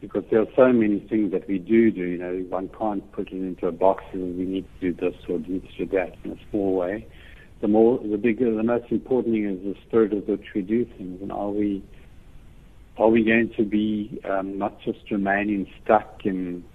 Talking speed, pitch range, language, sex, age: 235 wpm, 95-110 Hz, English, male, 70-89